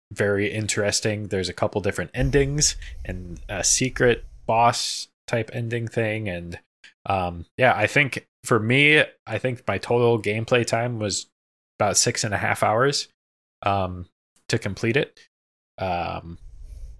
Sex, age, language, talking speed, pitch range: male, 20-39, English, 140 wpm, 90-120 Hz